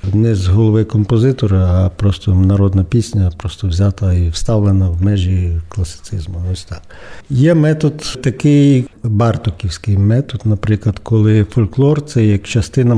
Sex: male